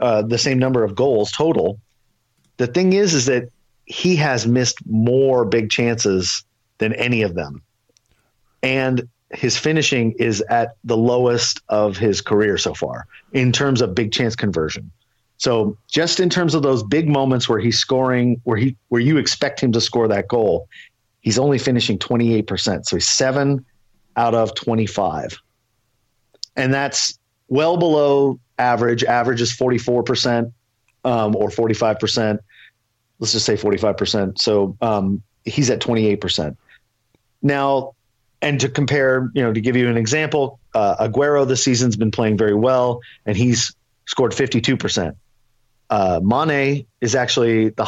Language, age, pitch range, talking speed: English, 40-59, 115-135 Hz, 150 wpm